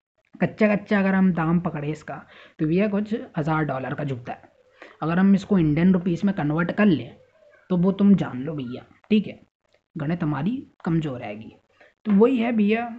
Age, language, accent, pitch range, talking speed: 20-39, Hindi, native, 155-195 Hz, 190 wpm